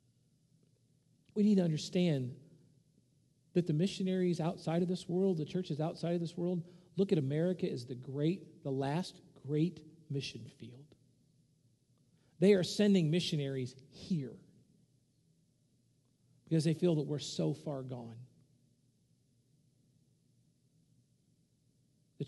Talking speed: 110 wpm